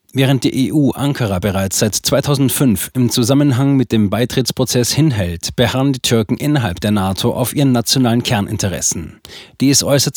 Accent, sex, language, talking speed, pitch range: German, male, German, 150 wpm, 110-130 Hz